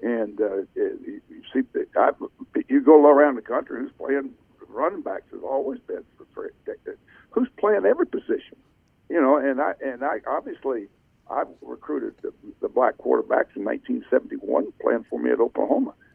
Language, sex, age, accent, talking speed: English, male, 60-79, American, 165 wpm